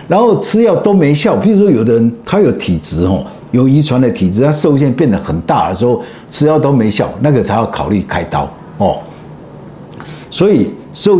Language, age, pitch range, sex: Chinese, 50-69, 115-150 Hz, male